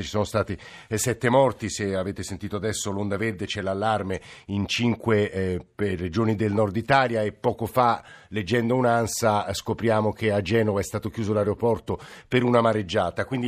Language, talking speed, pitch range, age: Italian, 165 wpm, 110-130 Hz, 50-69